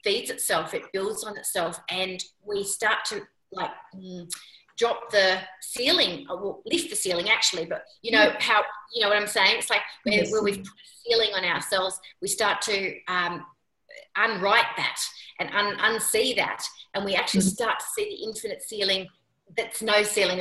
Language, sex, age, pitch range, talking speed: English, female, 30-49, 180-230 Hz, 180 wpm